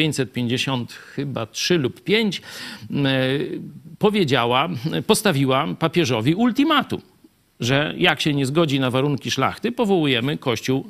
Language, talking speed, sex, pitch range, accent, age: Polish, 105 wpm, male, 120-170 Hz, native, 50-69